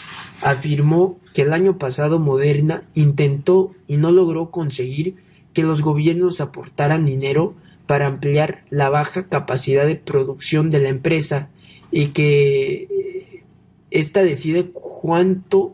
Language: Spanish